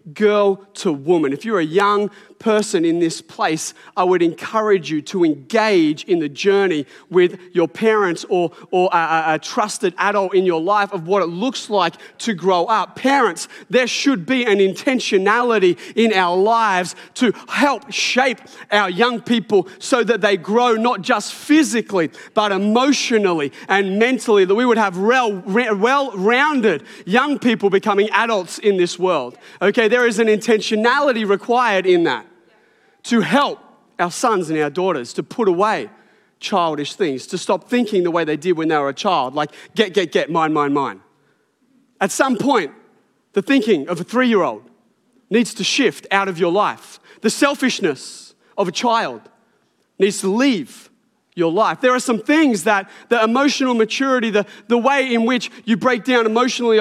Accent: Australian